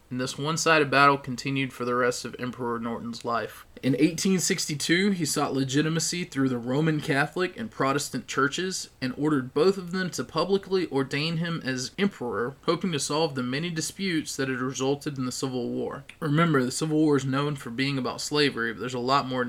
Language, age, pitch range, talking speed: English, 20-39, 125-150 Hz, 195 wpm